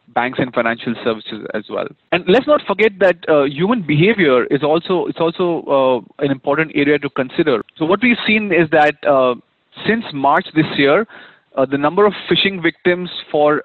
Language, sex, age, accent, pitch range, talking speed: English, male, 30-49, Indian, 135-170 Hz, 185 wpm